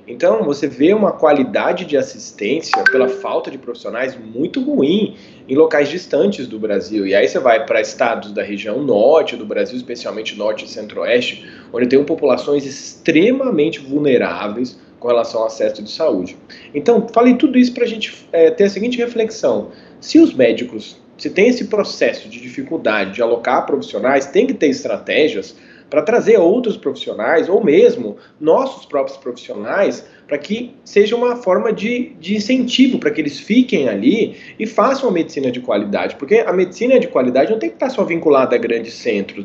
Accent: Brazilian